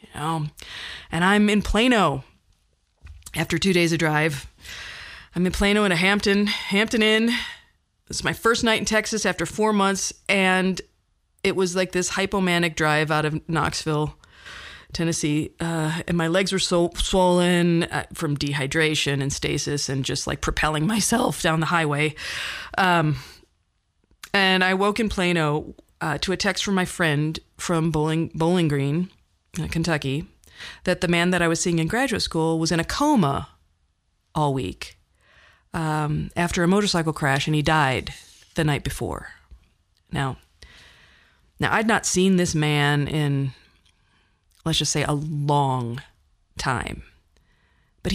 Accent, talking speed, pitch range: American, 145 wpm, 145-195 Hz